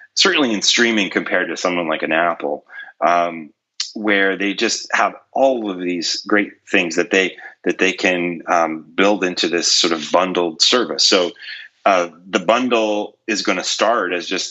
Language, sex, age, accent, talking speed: English, male, 30-49, American, 175 wpm